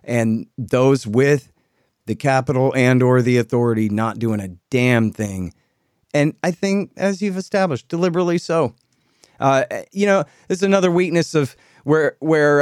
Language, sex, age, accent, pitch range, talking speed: English, male, 30-49, American, 115-140 Hz, 150 wpm